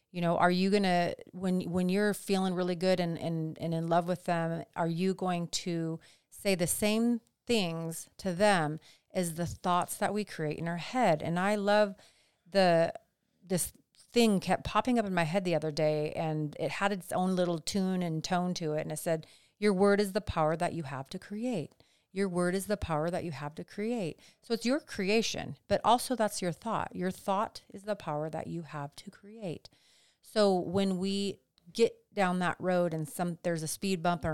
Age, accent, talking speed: 40-59, American, 210 wpm